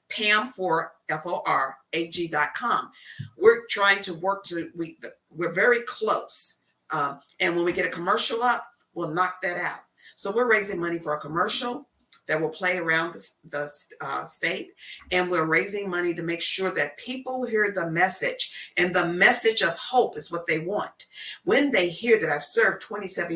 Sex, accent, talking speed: female, American, 175 wpm